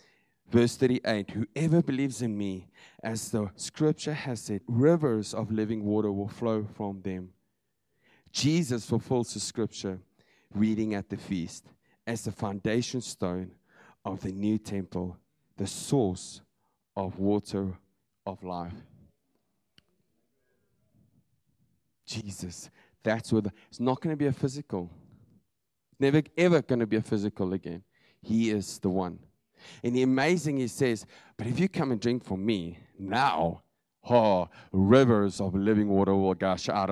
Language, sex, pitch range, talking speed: English, male, 100-130 Hz, 140 wpm